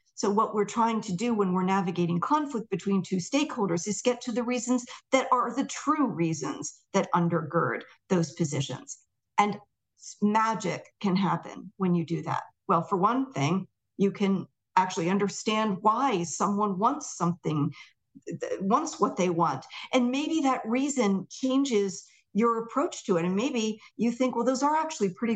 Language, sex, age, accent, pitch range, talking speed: English, female, 50-69, American, 180-250 Hz, 165 wpm